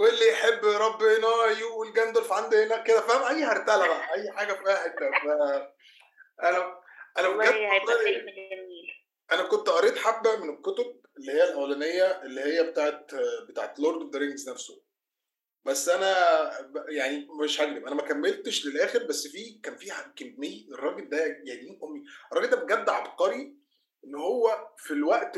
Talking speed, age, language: 150 wpm, 20-39, Arabic